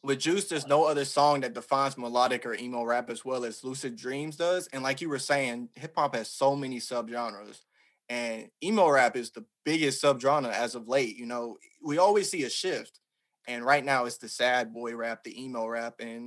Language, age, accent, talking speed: English, 20-39, American, 220 wpm